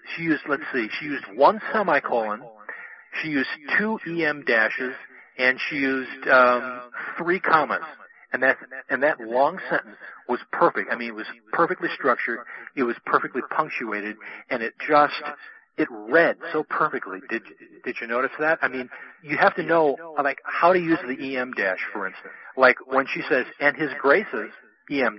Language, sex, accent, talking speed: English, male, American, 170 wpm